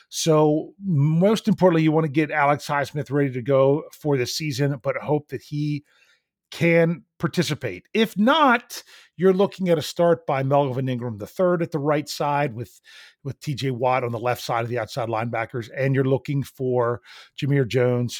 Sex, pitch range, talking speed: male, 125-165 Hz, 180 wpm